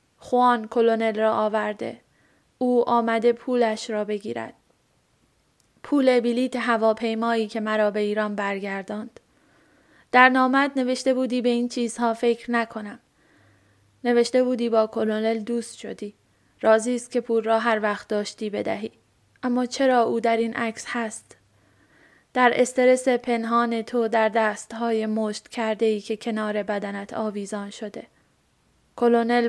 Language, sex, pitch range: Persian, female, 215-240 Hz